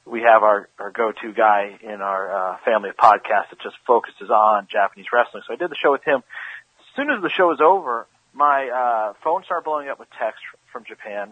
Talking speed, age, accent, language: 225 wpm, 40-59, American, English